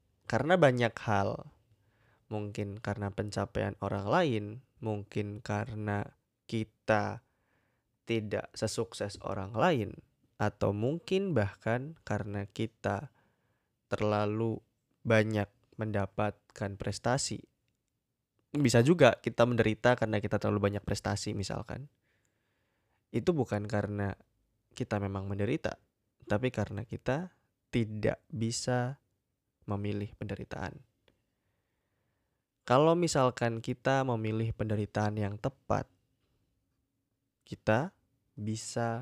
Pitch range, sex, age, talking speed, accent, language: 105-120 Hz, male, 20-39, 85 wpm, native, Indonesian